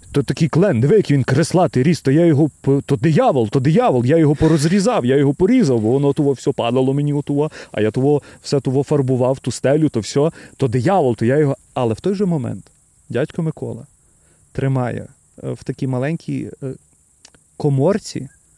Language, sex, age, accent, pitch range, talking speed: Ukrainian, male, 30-49, native, 135-190 Hz, 170 wpm